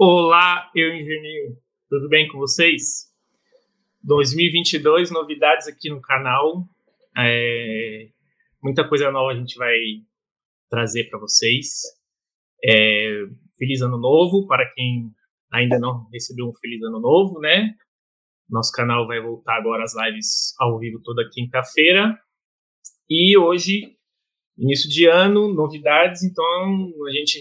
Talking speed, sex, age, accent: 125 wpm, male, 20-39, Brazilian